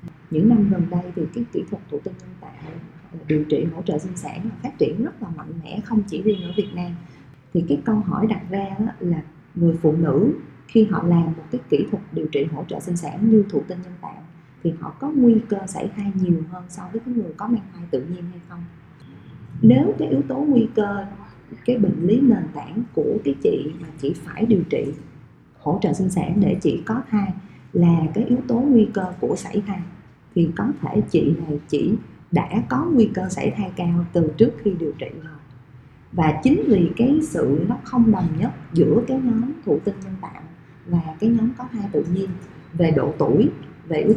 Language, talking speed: Vietnamese, 220 wpm